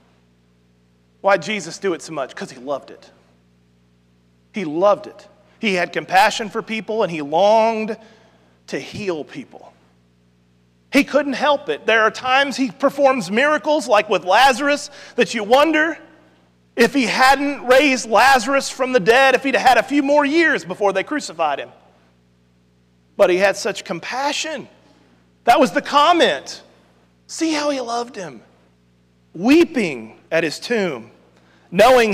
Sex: male